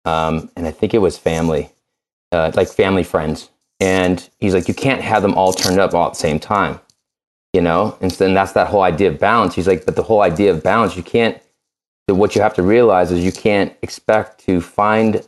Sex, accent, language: male, American, English